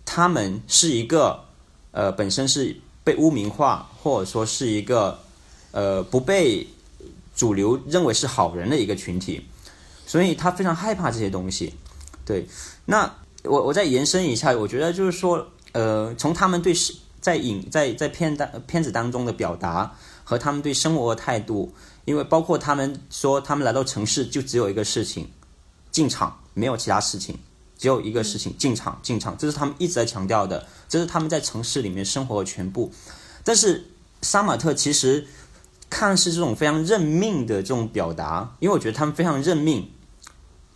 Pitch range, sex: 100-160 Hz, male